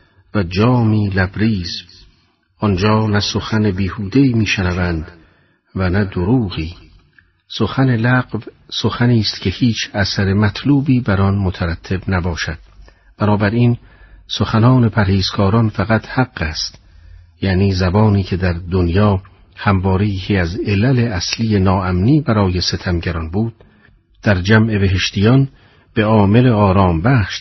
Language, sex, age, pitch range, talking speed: Persian, male, 50-69, 90-110 Hz, 110 wpm